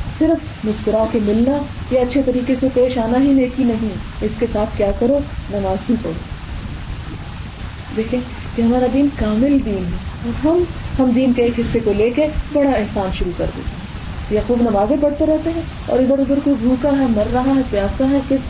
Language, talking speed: Urdu, 195 wpm